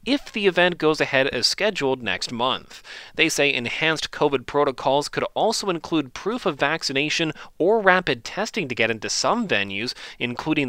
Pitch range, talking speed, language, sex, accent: 130-185 Hz, 165 wpm, English, male, American